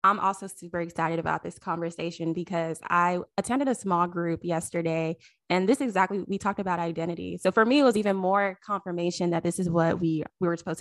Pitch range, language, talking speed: 170-205 Hz, English, 205 wpm